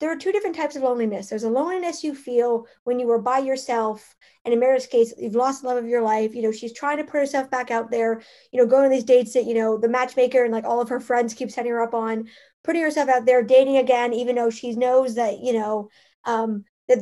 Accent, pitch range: American, 230-270 Hz